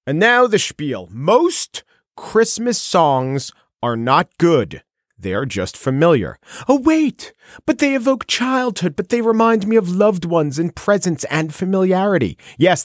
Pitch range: 140-220 Hz